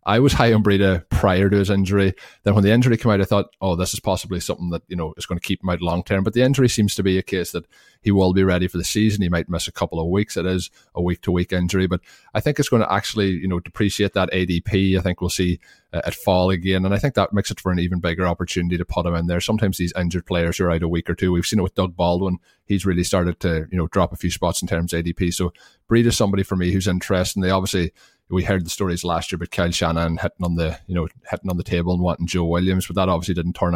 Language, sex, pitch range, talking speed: English, male, 85-100 Hz, 295 wpm